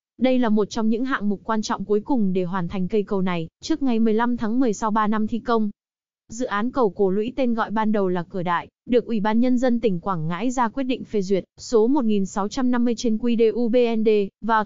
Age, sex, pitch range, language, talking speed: 20-39, female, 205-245 Hz, Vietnamese, 235 wpm